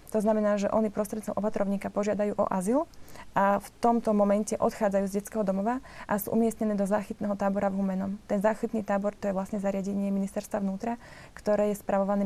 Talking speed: 180 wpm